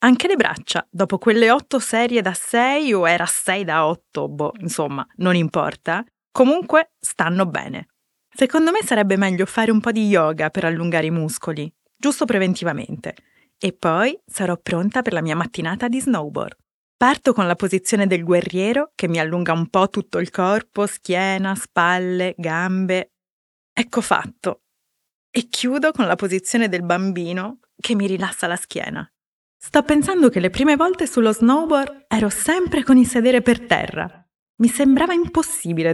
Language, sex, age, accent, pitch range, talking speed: Italian, female, 30-49, native, 175-245 Hz, 160 wpm